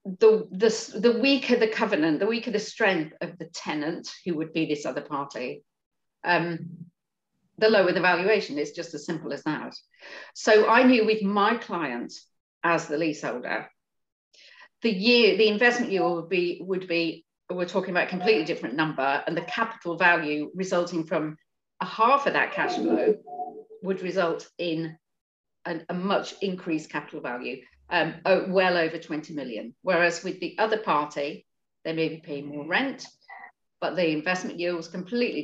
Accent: British